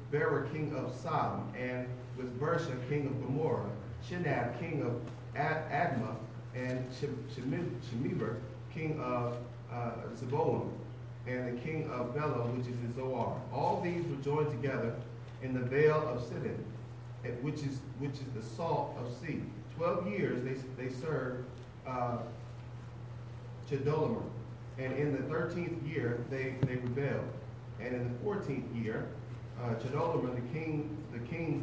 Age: 40-59